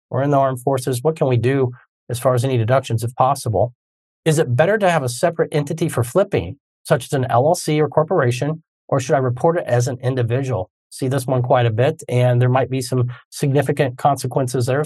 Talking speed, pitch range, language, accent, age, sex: 220 wpm, 120-150 Hz, English, American, 40-59, male